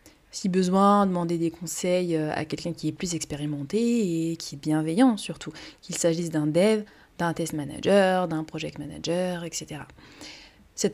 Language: French